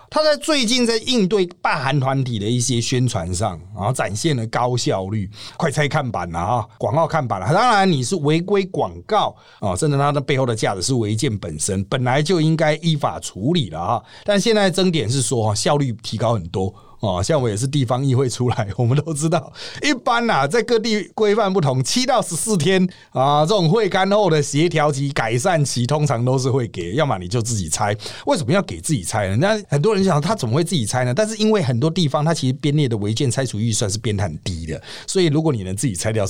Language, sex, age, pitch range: Chinese, male, 30-49, 115-165 Hz